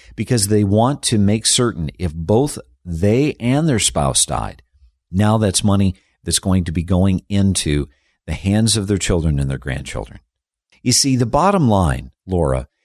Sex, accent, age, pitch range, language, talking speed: male, American, 50-69, 90-115 Hz, English, 170 wpm